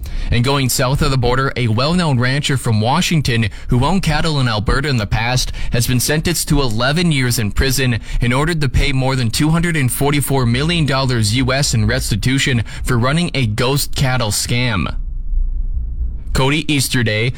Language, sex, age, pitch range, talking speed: English, male, 20-39, 115-135 Hz, 160 wpm